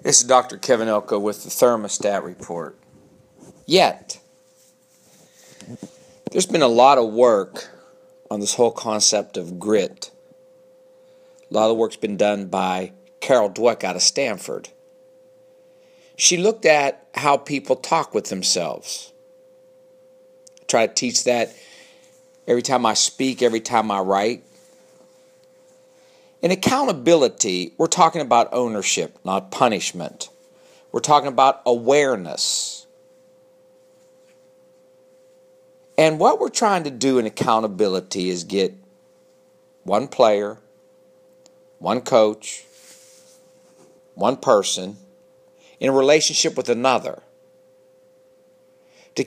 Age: 50-69